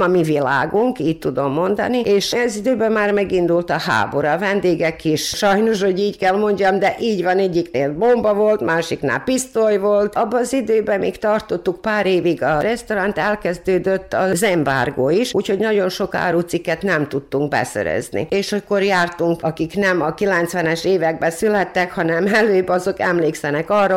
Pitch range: 160-205 Hz